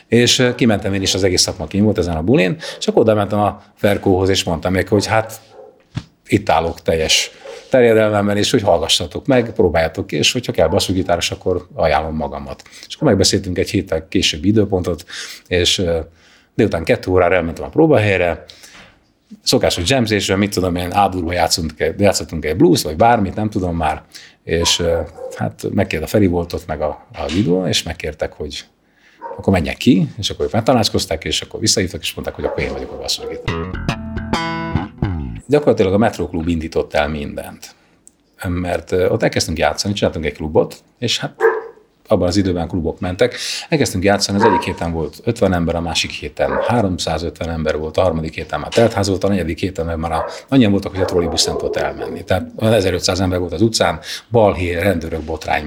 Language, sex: Hungarian, male